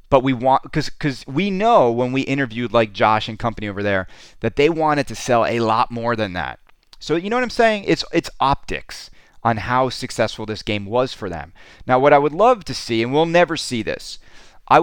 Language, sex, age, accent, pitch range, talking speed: English, male, 30-49, American, 110-145 Hz, 225 wpm